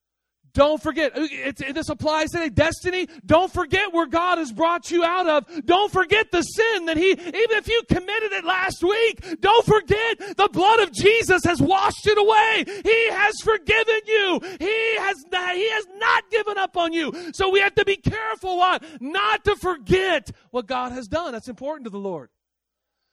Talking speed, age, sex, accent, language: 185 wpm, 40-59, male, American, English